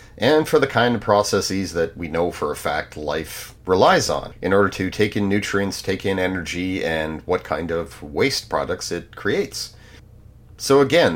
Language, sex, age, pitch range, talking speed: English, male, 40-59, 95-120 Hz, 185 wpm